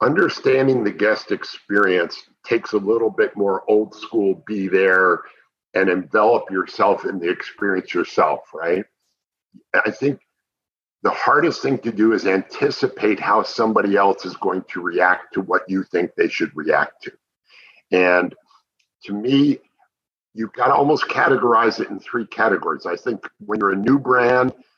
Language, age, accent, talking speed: English, 50-69, American, 155 wpm